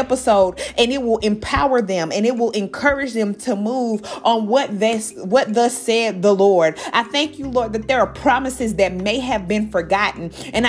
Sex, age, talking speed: female, 30-49, 195 wpm